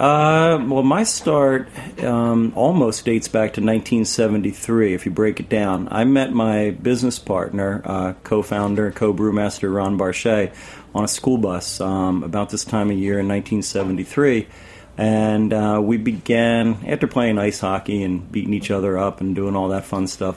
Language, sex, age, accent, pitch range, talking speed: English, male, 40-59, American, 100-110 Hz, 170 wpm